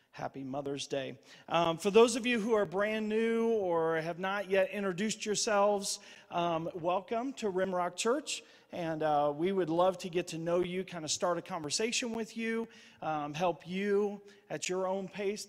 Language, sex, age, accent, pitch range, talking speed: English, male, 40-59, American, 150-190 Hz, 180 wpm